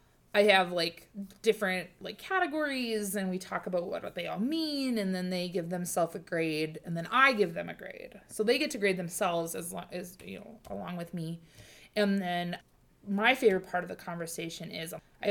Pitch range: 180-225 Hz